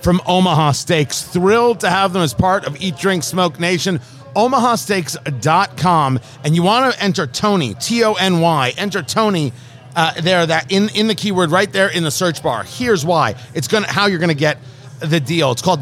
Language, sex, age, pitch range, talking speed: English, male, 40-59, 145-205 Hz, 190 wpm